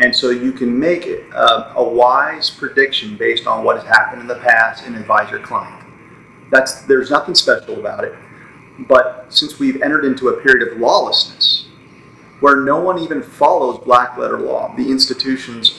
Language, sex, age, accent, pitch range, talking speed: English, male, 40-59, American, 125-155 Hz, 180 wpm